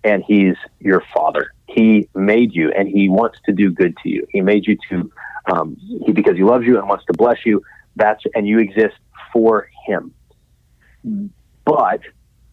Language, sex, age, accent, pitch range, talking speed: English, male, 30-49, American, 95-115 Hz, 175 wpm